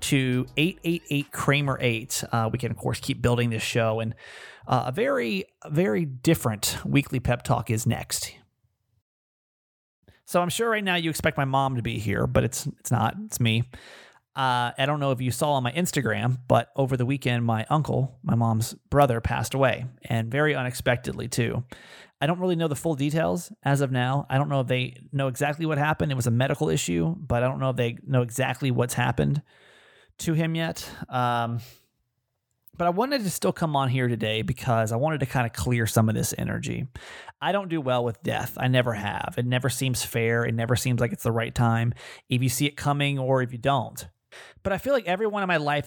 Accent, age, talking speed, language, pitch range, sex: American, 30-49, 210 wpm, English, 120-145 Hz, male